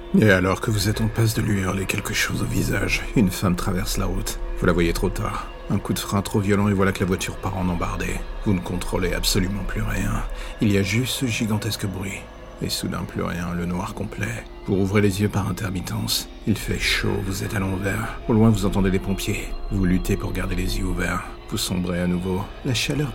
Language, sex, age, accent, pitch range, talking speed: French, male, 50-69, French, 90-105 Hz, 235 wpm